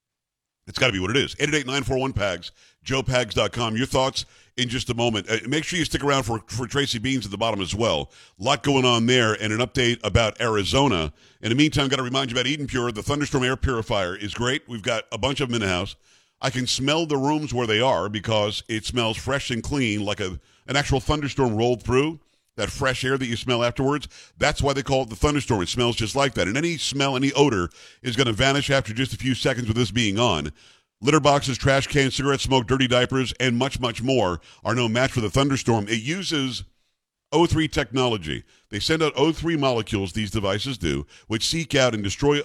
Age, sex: 50-69, male